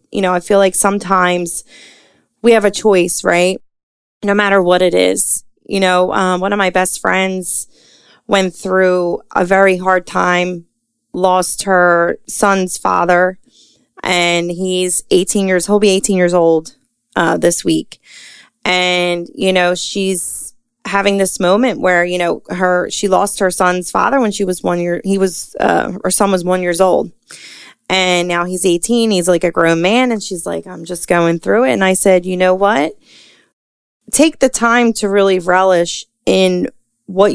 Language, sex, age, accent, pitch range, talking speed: English, female, 20-39, American, 180-205 Hz, 170 wpm